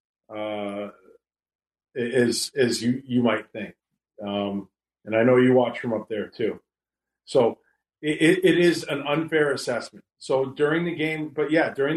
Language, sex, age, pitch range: English, male, 40-59, 110-130 Hz